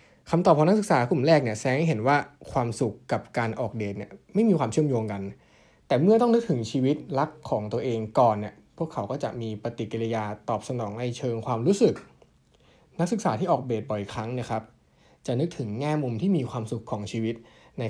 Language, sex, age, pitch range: Thai, male, 20-39, 110-150 Hz